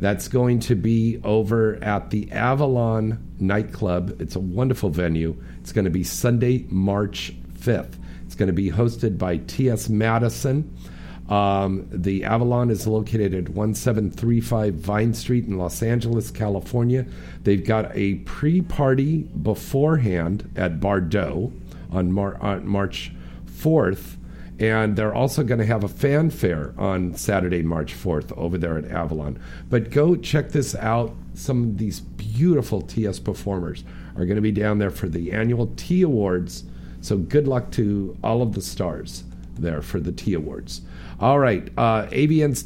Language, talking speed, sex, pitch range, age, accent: English, 150 wpm, male, 95-125 Hz, 50-69, American